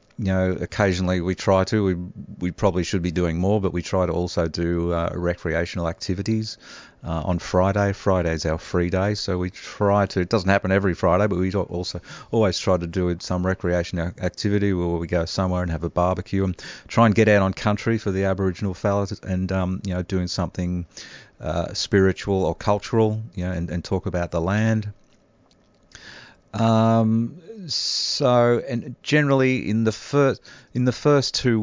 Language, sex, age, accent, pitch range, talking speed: English, male, 40-59, Australian, 90-105 Hz, 185 wpm